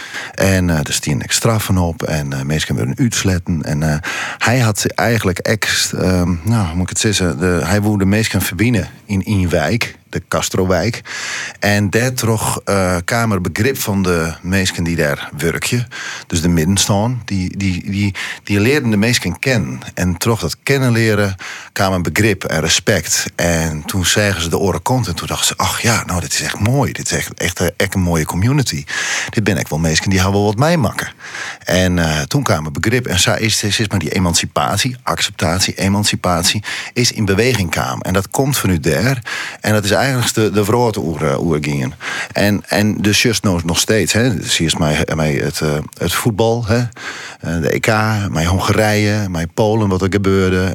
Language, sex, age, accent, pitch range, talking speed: Dutch, male, 40-59, Dutch, 85-110 Hz, 195 wpm